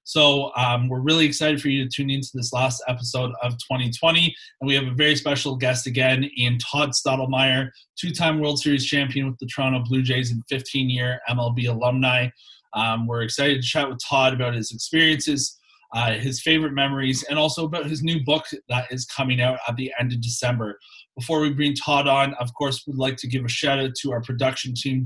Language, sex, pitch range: English, male, 125-140 Hz